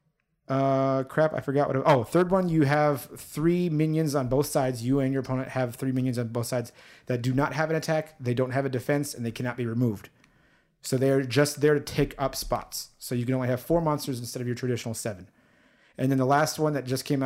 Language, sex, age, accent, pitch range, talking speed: English, male, 30-49, American, 125-150 Hz, 245 wpm